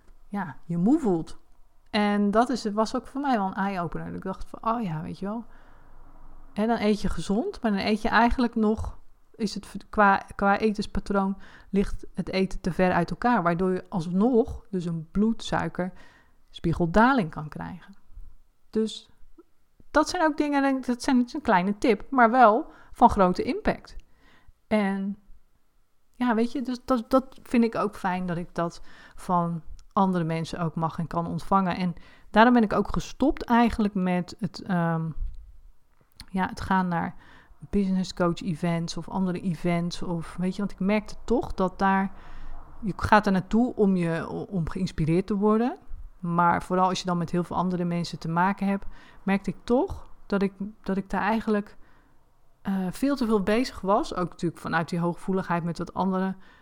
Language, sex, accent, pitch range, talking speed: Dutch, female, Dutch, 175-220 Hz, 175 wpm